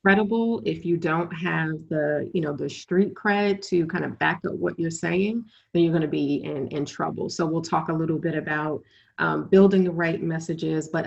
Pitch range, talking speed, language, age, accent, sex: 160-185 Hz, 215 wpm, English, 30-49, American, female